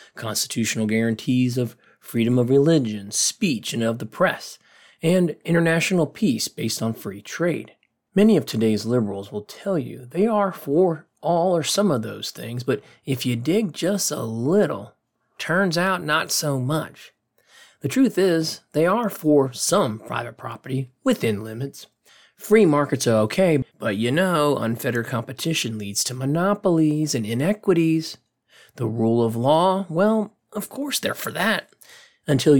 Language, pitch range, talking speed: English, 115-165 Hz, 150 wpm